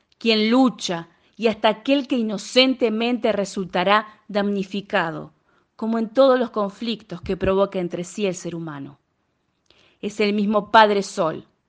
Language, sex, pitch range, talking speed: Spanish, female, 200-265 Hz, 135 wpm